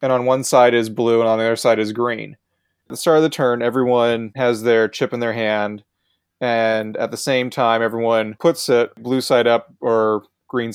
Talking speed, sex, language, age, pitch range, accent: 220 wpm, male, English, 20-39, 110-130 Hz, American